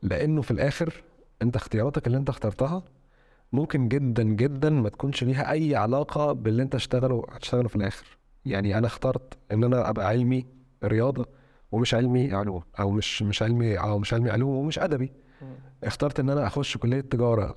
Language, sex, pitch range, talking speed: Arabic, male, 110-135 Hz, 165 wpm